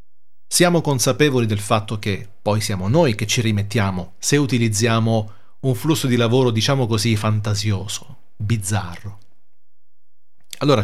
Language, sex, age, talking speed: Italian, male, 40-59, 120 wpm